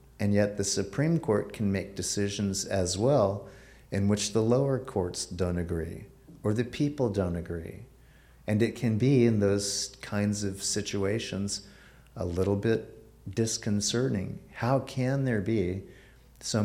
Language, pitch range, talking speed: English, 95-115 Hz, 145 wpm